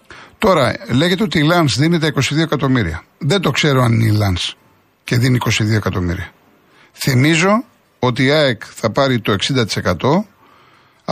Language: Greek